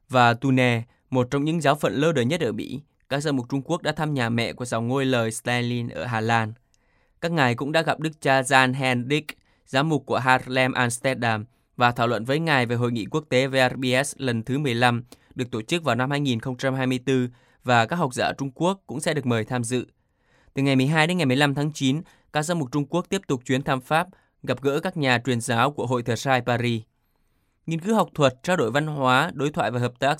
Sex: male